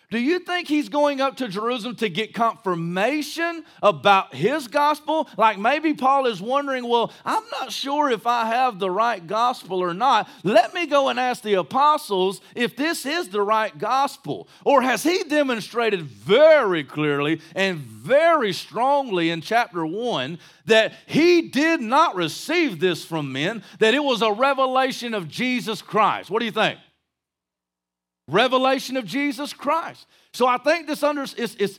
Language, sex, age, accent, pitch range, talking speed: English, male, 40-59, American, 205-275 Hz, 165 wpm